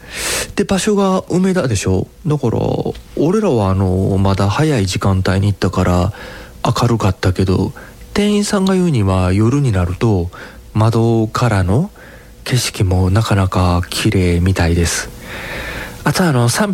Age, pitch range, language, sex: 40-59, 95-135 Hz, Japanese, male